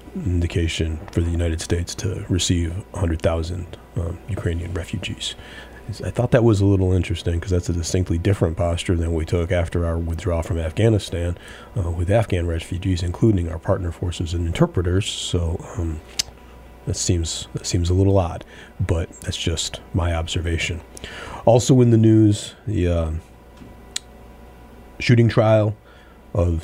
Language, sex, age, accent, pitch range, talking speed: English, male, 40-59, American, 85-95 Hz, 145 wpm